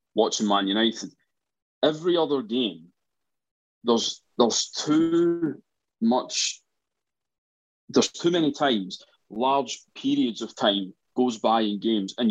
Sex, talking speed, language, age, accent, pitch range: male, 110 wpm, English, 20-39, British, 110-175 Hz